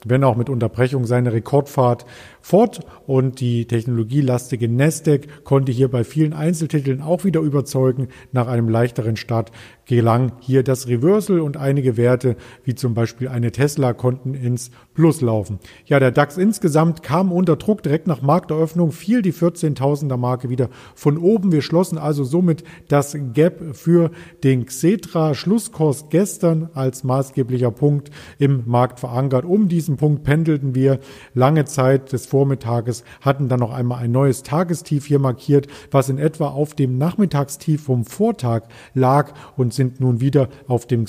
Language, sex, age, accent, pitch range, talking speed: German, male, 50-69, German, 125-155 Hz, 155 wpm